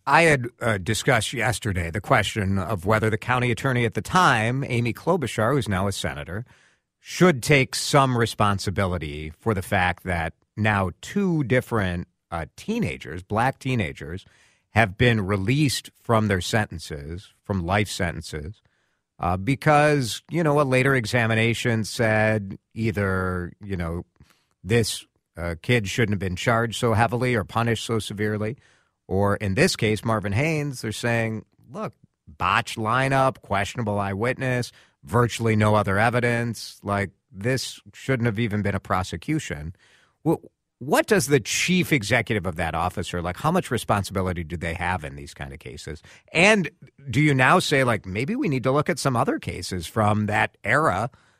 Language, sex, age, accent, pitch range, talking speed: English, male, 50-69, American, 95-125 Hz, 155 wpm